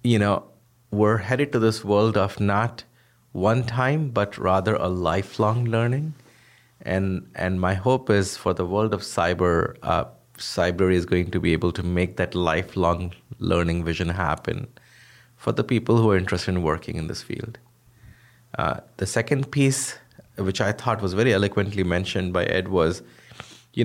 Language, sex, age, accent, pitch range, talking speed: English, male, 30-49, Indian, 95-115 Hz, 165 wpm